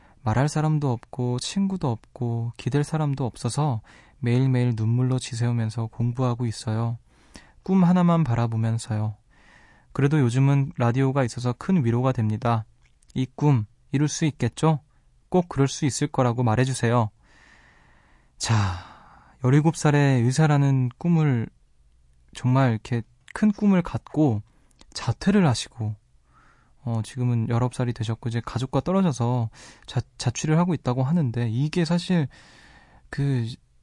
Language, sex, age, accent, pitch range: Korean, male, 20-39, native, 115-145 Hz